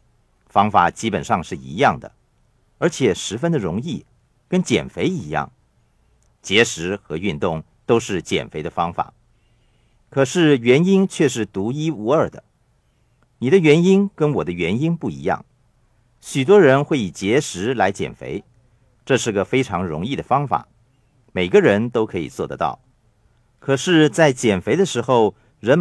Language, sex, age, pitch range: Chinese, male, 50-69, 105-135 Hz